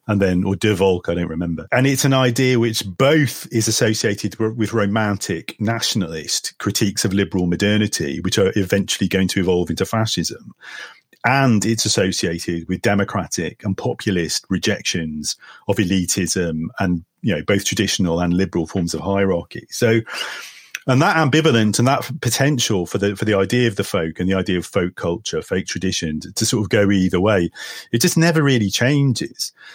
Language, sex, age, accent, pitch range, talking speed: English, male, 40-59, British, 90-120 Hz, 175 wpm